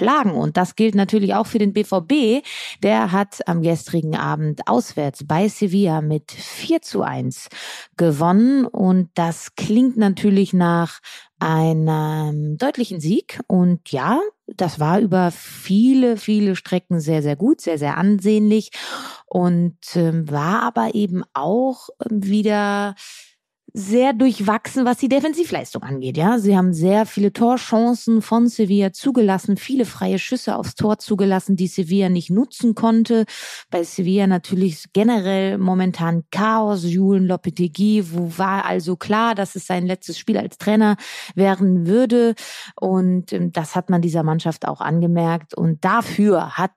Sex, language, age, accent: female, German, 30-49, German